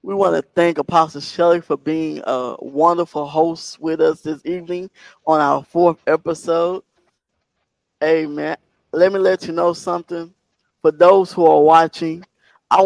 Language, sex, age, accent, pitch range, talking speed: English, male, 20-39, American, 150-175 Hz, 150 wpm